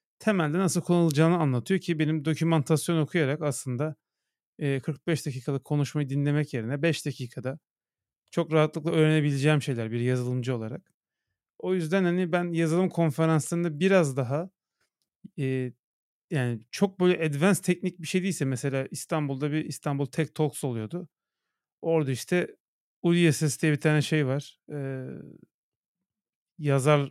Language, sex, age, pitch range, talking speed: Turkish, male, 40-59, 140-185 Hz, 120 wpm